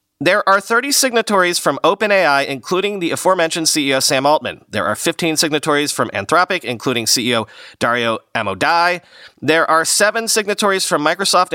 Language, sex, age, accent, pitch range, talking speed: English, male, 40-59, American, 130-195 Hz, 145 wpm